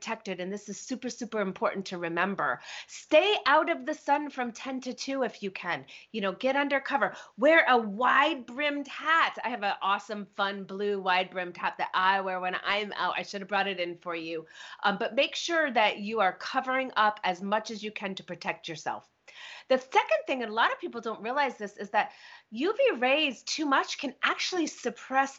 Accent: American